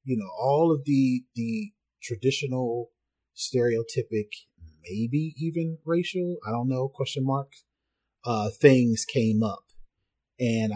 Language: English